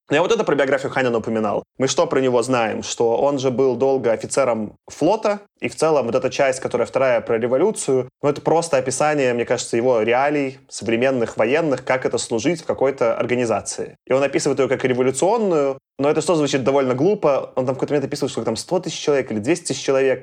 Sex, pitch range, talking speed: male, 120-150 Hz, 215 wpm